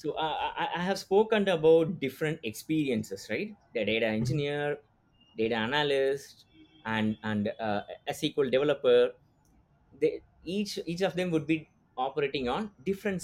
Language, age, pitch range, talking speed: English, 20-39, 120-190 Hz, 135 wpm